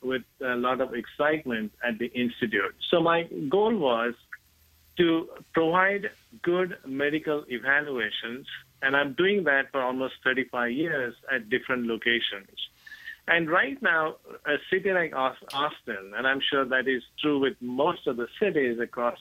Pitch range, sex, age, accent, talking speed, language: 120-155 Hz, male, 50-69, Indian, 145 wpm, English